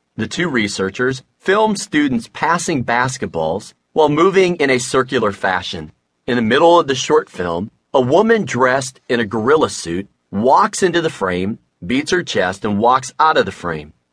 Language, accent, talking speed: English, American, 170 wpm